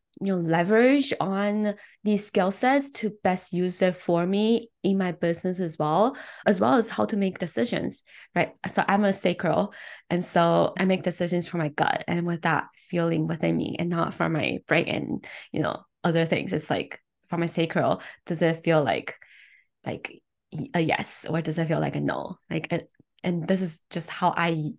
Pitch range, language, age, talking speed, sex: 170-195 Hz, English, 20-39, 195 wpm, female